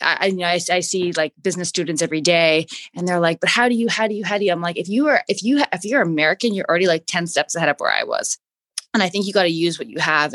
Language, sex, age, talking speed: English, female, 20-39, 315 wpm